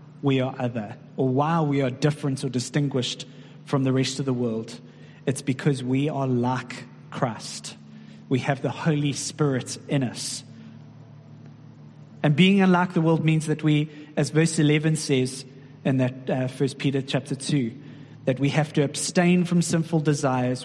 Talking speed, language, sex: 160 wpm, English, male